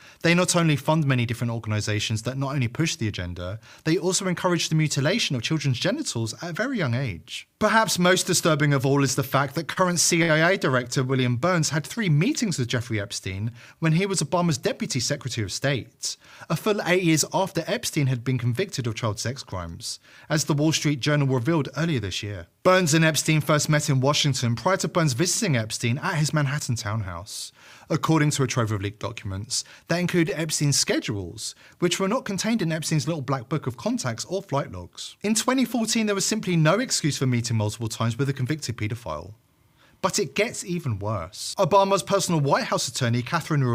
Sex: male